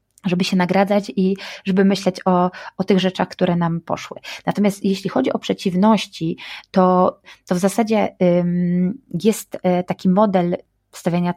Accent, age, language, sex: native, 20-39, Polish, female